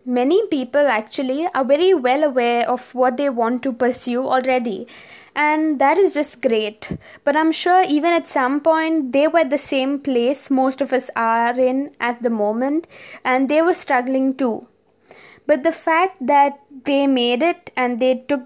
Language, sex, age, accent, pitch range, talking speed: English, female, 20-39, Indian, 255-310 Hz, 180 wpm